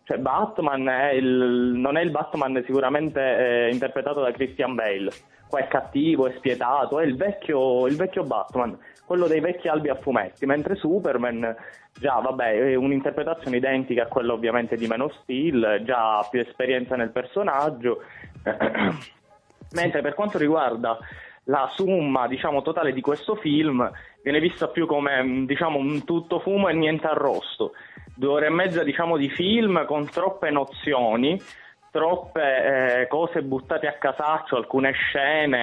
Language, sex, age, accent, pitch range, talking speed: Italian, male, 20-39, native, 120-150 Hz, 155 wpm